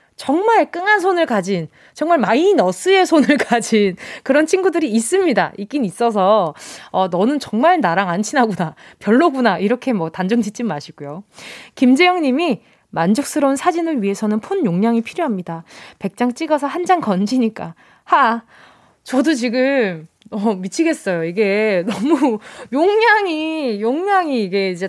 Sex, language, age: female, Korean, 20-39